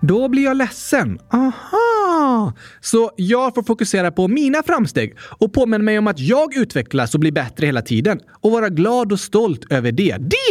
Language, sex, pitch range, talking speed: Swedish, male, 160-255 Hz, 185 wpm